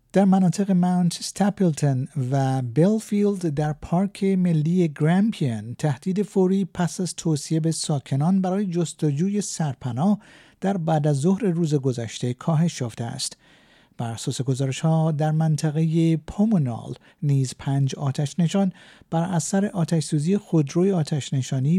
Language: Persian